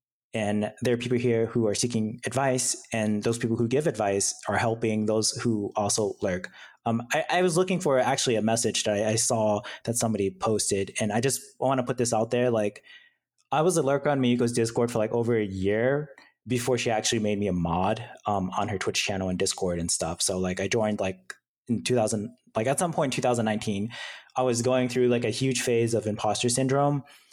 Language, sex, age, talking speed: English, male, 20-39, 215 wpm